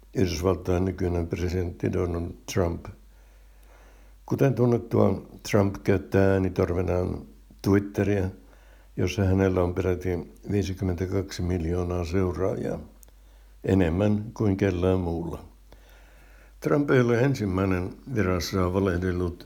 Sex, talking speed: male, 90 wpm